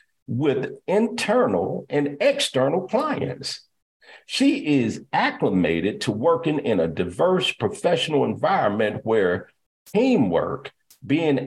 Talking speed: 95 wpm